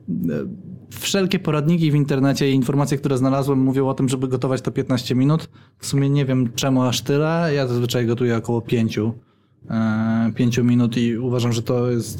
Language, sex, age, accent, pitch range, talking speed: Polish, male, 20-39, native, 120-140 Hz, 170 wpm